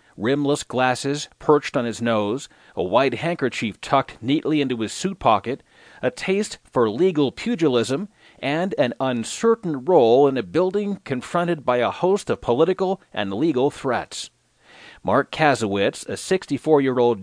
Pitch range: 115-155 Hz